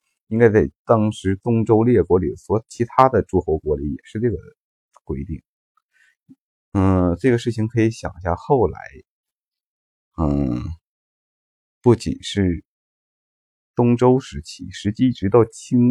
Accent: native